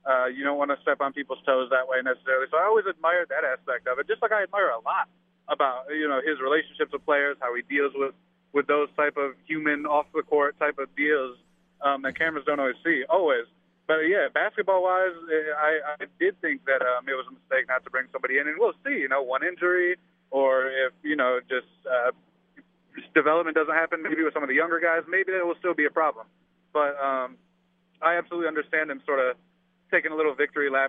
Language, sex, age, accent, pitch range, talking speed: English, male, 30-49, American, 135-180 Hz, 225 wpm